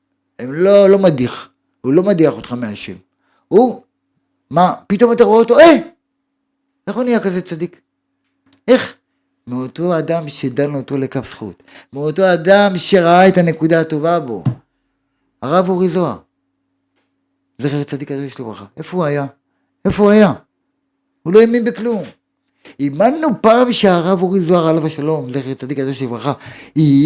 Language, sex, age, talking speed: Hebrew, male, 50-69, 140 wpm